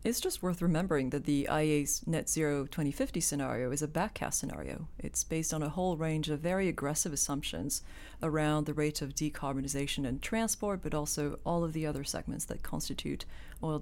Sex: female